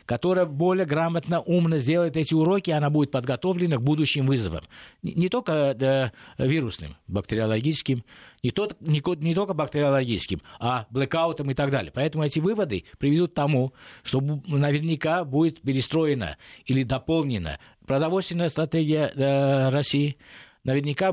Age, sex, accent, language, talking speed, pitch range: 50-69, male, native, Russian, 115 wpm, 130-160 Hz